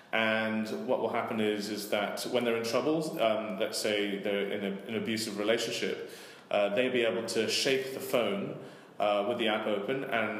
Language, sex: English, male